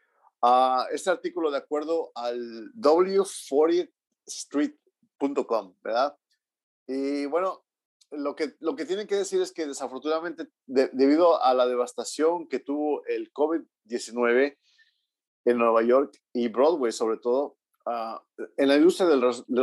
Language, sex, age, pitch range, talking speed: English, male, 40-59, 125-195 Hz, 130 wpm